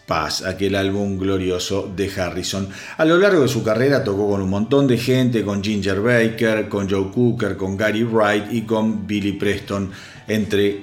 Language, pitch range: Spanish, 105-135 Hz